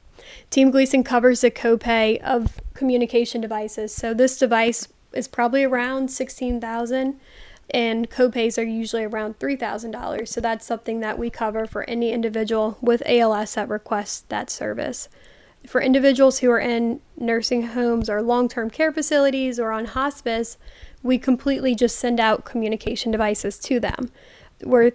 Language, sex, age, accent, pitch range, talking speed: English, female, 10-29, American, 225-255 Hz, 145 wpm